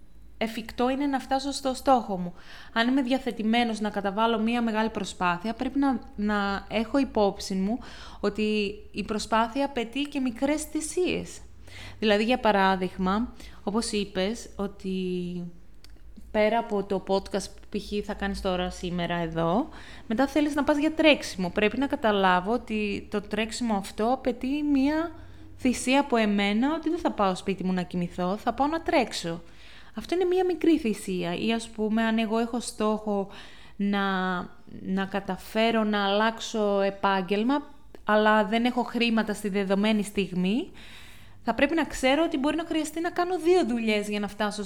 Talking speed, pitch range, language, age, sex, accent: 155 wpm, 200-250 Hz, Greek, 20-39, female, native